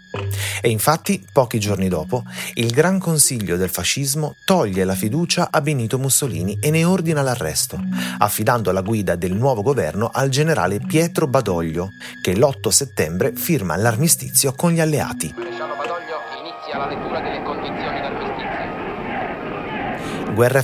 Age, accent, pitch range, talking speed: 30-49, native, 105-155 Hz, 115 wpm